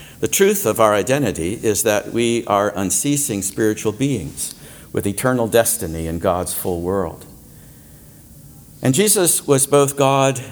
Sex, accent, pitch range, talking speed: male, American, 105-140 Hz, 135 wpm